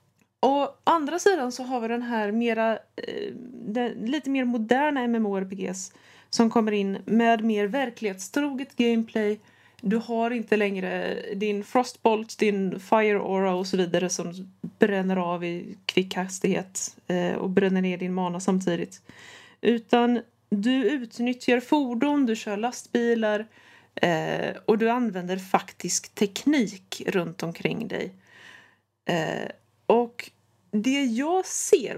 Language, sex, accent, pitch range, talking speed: Swedish, female, native, 195-240 Hz, 115 wpm